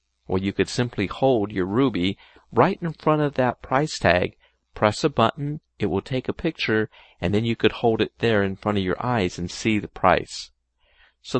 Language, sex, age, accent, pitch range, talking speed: English, male, 50-69, American, 90-135 Hz, 205 wpm